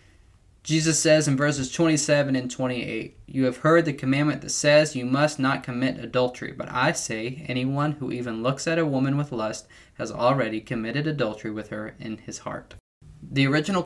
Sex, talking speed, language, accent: male, 180 wpm, English, American